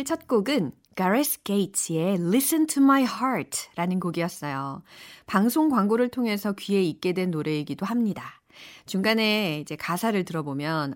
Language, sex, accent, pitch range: Korean, female, native, 175-255 Hz